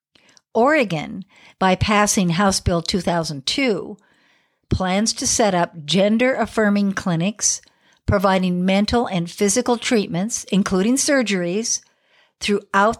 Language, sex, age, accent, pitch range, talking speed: English, female, 60-79, American, 185-235 Hz, 90 wpm